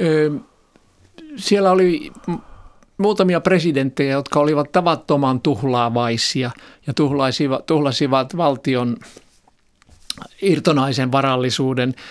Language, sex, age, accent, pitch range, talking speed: Finnish, male, 50-69, native, 120-145 Hz, 70 wpm